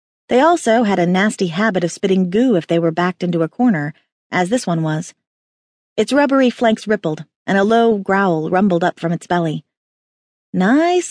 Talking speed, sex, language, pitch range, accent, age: 185 wpm, female, English, 175-235 Hz, American, 30-49